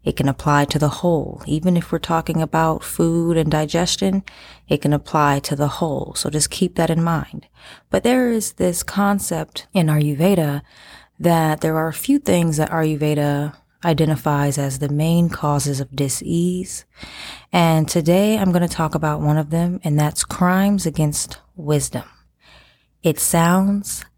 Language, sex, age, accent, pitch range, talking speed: English, female, 20-39, American, 150-185 Hz, 160 wpm